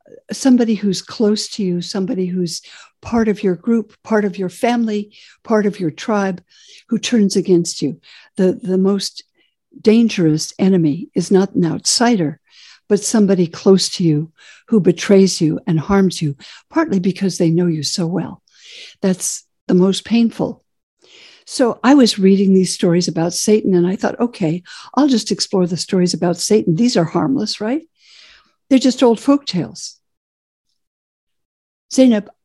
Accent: American